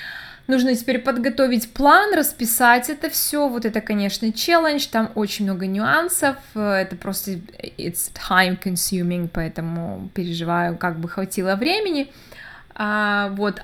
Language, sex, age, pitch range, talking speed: Russian, female, 20-39, 195-240 Hz, 115 wpm